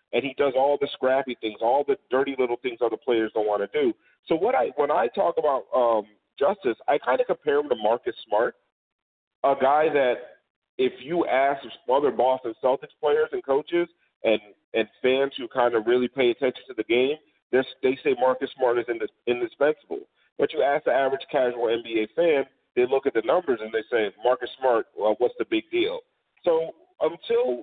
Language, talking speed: English, 200 wpm